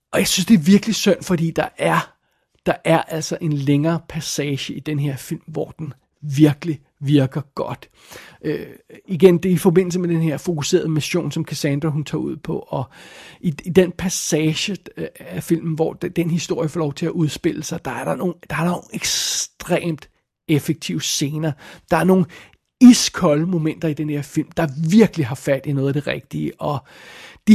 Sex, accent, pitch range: male, native, 155-175 Hz